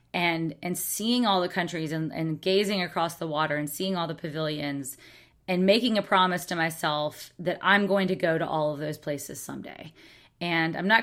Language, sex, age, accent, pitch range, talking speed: English, female, 30-49, American, 155-185 Hz, 200 wpm